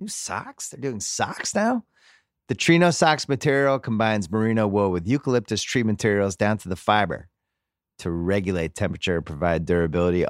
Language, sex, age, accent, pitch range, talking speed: English, male, 30-49, American, 95-130 Hz, 150 wpm